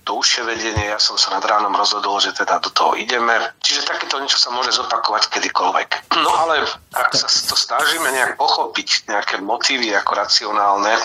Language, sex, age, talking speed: Slovak, male, 30-49, 175 wpm